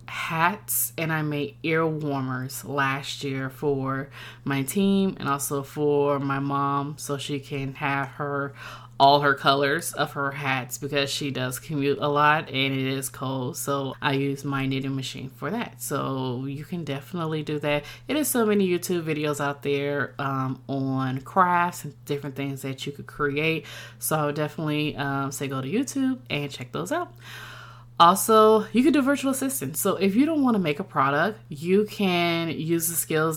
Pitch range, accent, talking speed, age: 140-170 Hz, American, 185 wpm, 20-39